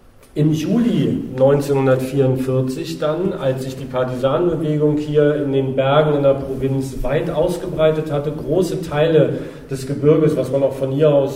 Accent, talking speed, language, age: German, 150 wpm, German, 40-59